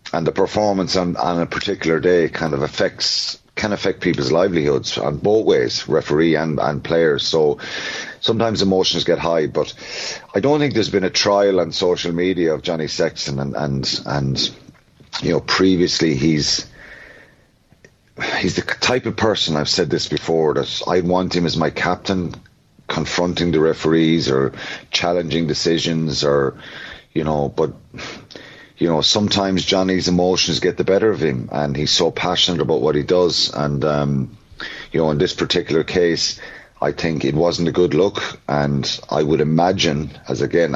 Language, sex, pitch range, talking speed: English, male, 75-90 Hz, 165 wpm